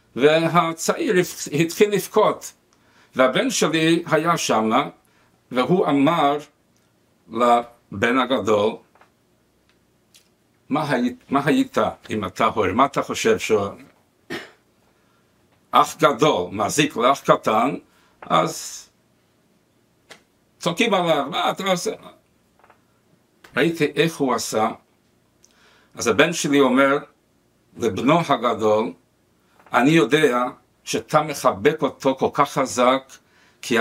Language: Hebrew